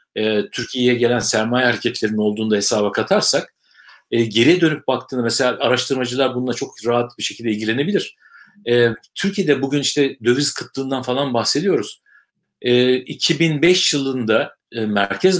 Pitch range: 115-150 Hz